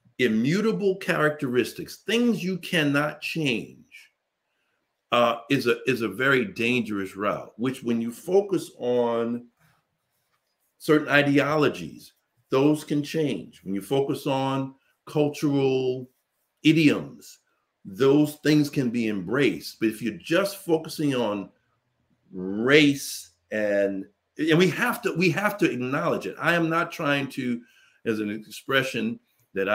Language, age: English, 60-79